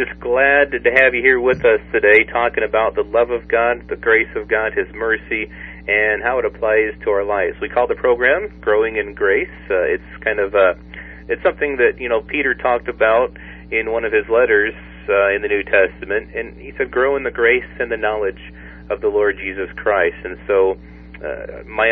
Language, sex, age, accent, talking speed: English, male, 40-59, American, 210 wpm